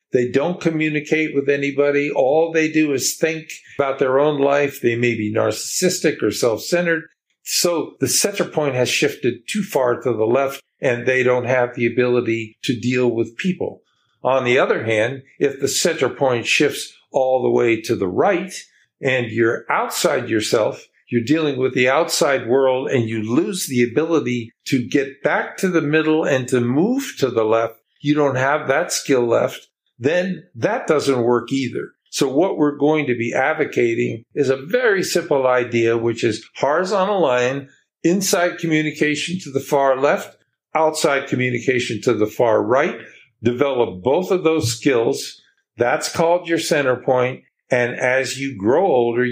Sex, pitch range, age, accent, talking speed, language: male, 120-155 Hz, 50-69, American, 165 wpm, English